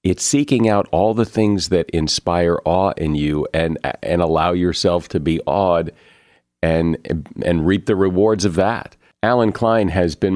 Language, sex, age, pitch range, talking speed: English, male, 50-69, 85-110 Hz, 170 wpm